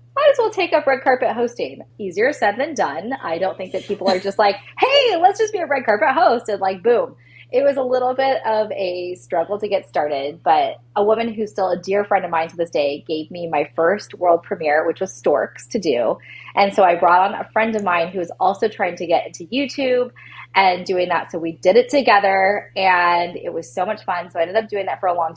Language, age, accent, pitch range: English, 20-39, American, 165-230 Hz